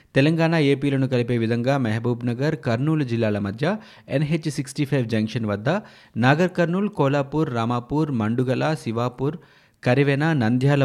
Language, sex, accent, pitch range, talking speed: Telugu, male, native, 110-145 Hz, 115 wpm